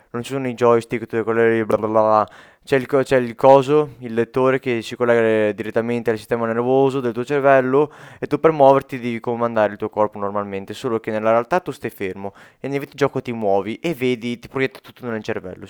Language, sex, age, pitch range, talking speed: Italian, male, 20-39, 115-140 Hz, 215 wpm